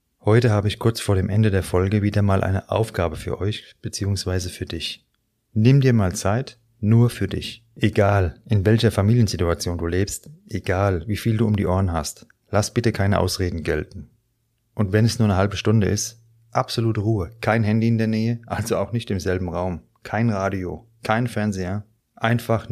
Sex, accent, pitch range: male, German, 95-115 Hz